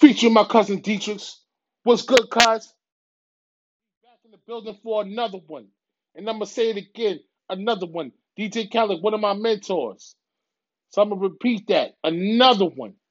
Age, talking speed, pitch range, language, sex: 20-39, 170 wpm, 165-215 Hz, English, male